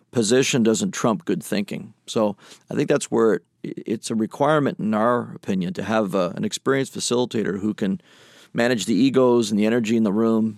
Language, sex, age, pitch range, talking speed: English, male, 40-59, 105-135 Hz, 180 wpm